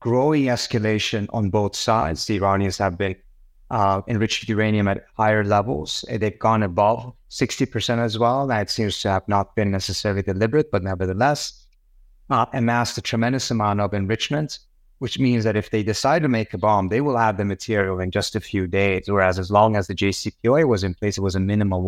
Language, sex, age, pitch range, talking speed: English, male, 30-49, 100-125 Hz, 195 wpm